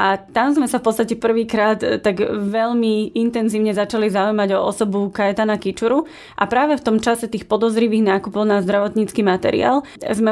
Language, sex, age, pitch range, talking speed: Slovak, female, 20-39, 200-225 Hz, 165 wpm